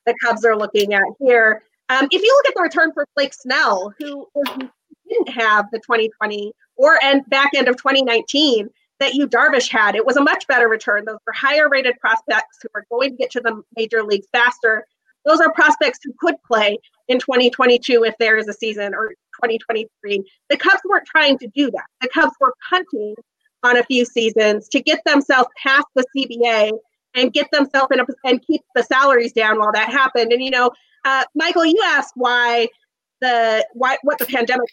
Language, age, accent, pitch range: English, 30-49, American, 230-295 Hz